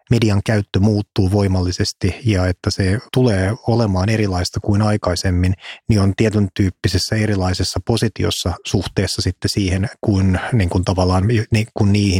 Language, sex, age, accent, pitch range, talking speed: Finnish, male, 30-49, native, 95-110 Hz, 120 wpm